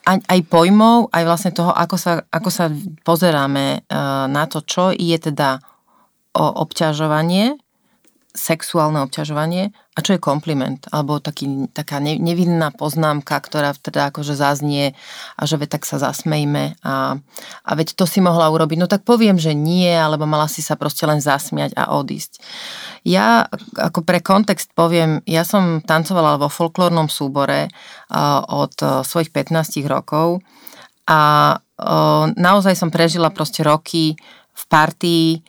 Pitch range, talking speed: 150-185 Hz, 140 wpm